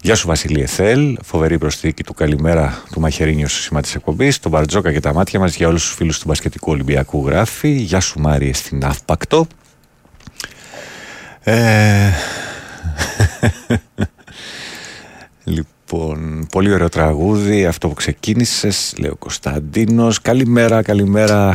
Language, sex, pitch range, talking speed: Greek, male, 75-105 Hz, 125 wpm